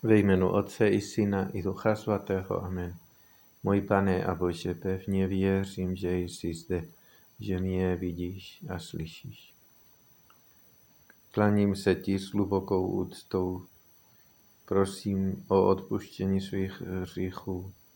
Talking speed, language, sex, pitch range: 110 wpm, Czech, male, 90-100 Hz